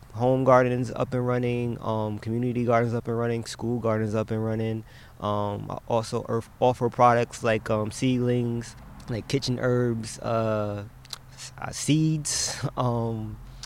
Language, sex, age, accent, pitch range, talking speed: English, male, 20-39, American, 115-130 Hz, 140 wpm